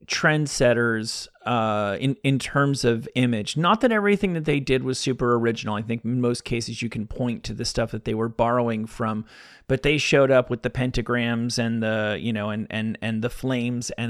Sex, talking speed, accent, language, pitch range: male, 210 wpm, American, English, 110-130 Hz